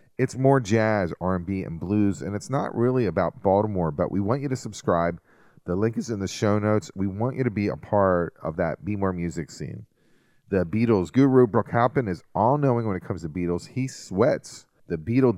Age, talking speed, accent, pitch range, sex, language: 30-49, 210 wpm, American, 90-115 Hz, male, English